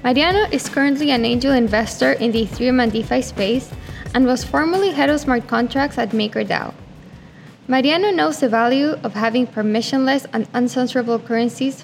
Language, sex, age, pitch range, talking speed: English, female, 10-29, 235-275 Hz, 155 wpm